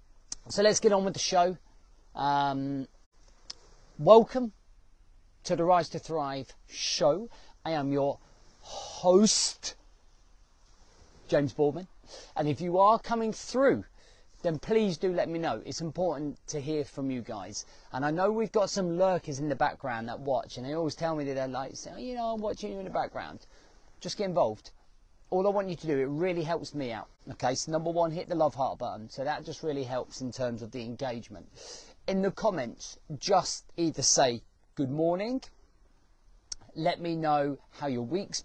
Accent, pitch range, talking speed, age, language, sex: British, 130-180 Hz, 180 wpm, 40-59, English, male